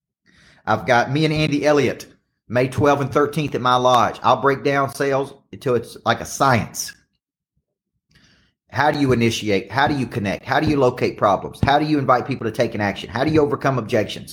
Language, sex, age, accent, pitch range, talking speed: English, male, 40-59, American, 105-135 Hz, 205 wpm